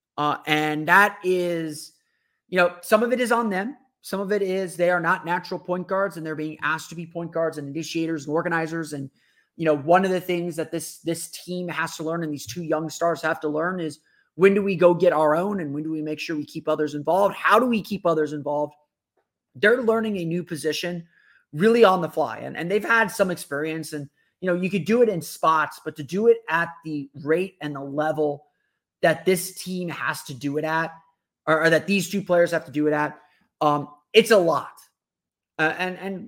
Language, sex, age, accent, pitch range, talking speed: English, male, 30-49, American, 155-200 Hz, 230 wpm